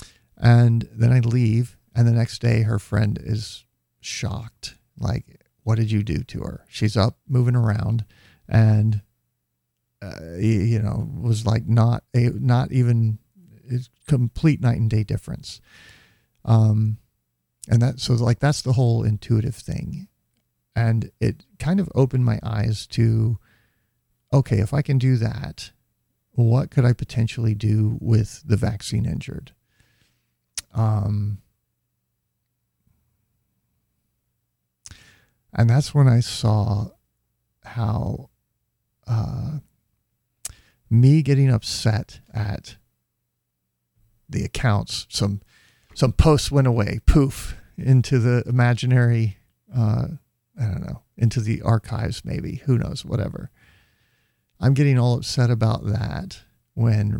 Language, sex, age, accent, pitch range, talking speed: English, male, 40-59, American, 110-125 Hz, 120 wpm